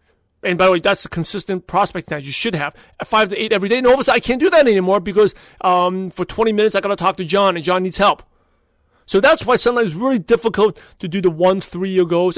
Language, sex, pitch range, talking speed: English, male, 170-225 Hz, 265 wpm